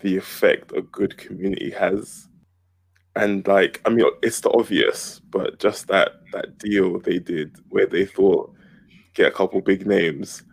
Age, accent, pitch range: 20-39, British, 95-115 Hz